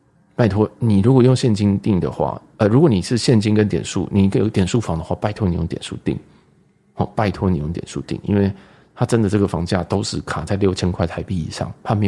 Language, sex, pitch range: Chinese, male, 90-110 Hz